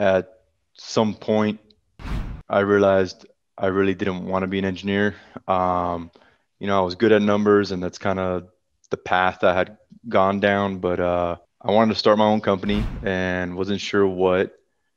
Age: 20-39